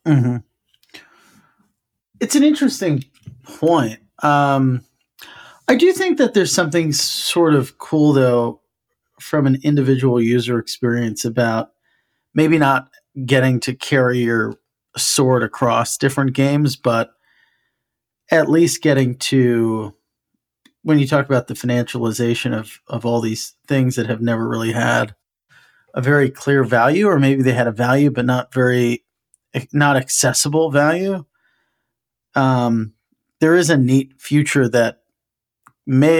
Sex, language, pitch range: male, English, 115-140 Hz